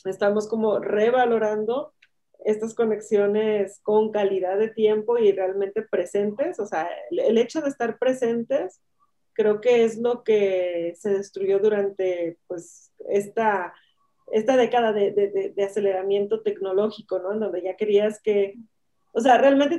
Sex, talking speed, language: female, 145 wpm, Spanish